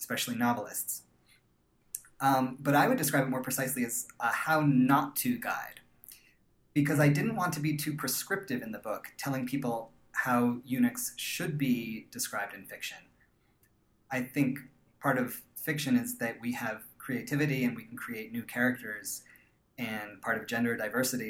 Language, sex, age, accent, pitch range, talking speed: English, male, 30-49, American, 115-145 Hz, 155 wpm